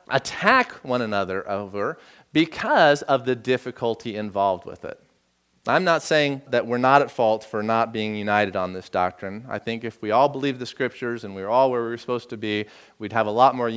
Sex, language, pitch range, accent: male, English, 105-160 Hz, American